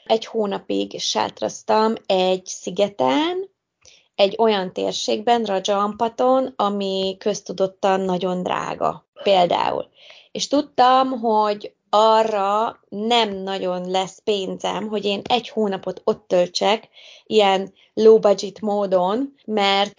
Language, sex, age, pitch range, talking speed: Hungarian, female, 20-39, 195-245 Hz, 95 wpm